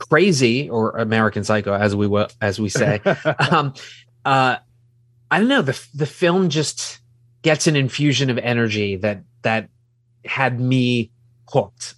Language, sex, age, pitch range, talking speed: English, male, 30-49, 115-130 Hz, 140 wpm